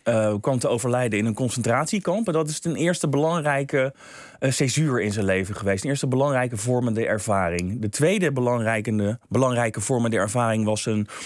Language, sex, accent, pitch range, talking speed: Dutch, male, Dutch, 110-145 Hz, 170 wpm